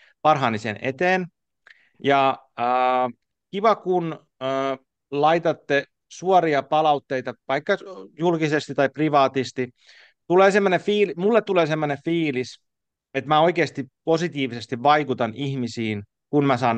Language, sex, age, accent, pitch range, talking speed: Finnish, male, 30-49, native, 120-165 Hz, 105 wpm